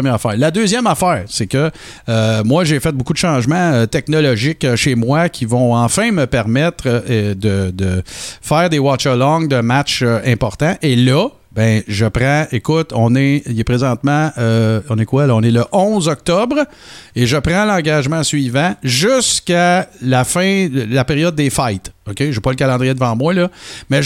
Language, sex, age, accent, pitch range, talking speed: French, male, 50-69, Canadian, 110-155 Hz, 190 wpm